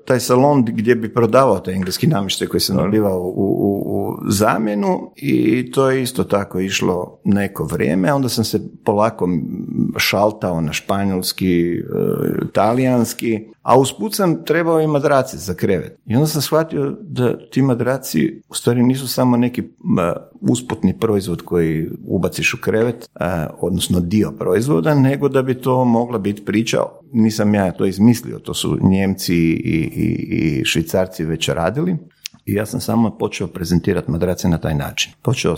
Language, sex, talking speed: Croatian, male, 155 wpm